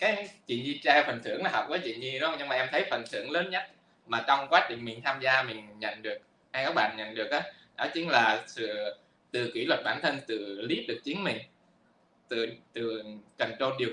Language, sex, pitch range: Vietnamese, male, 115-155 Hz